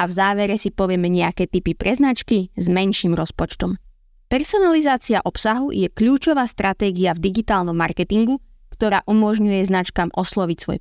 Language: Slovak